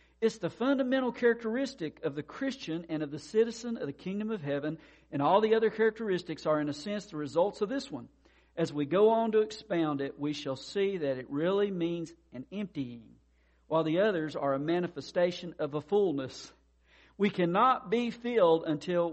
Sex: male